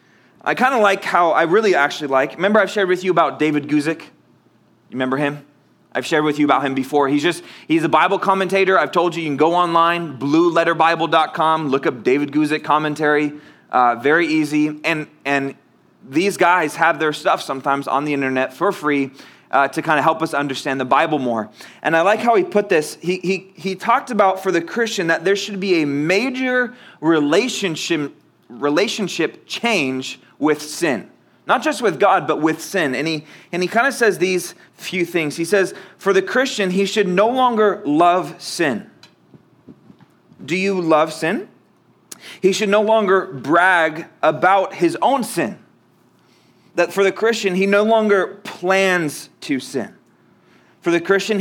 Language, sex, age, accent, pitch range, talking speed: English, male, 20-39, American, 150-195 Hz, 175 wpm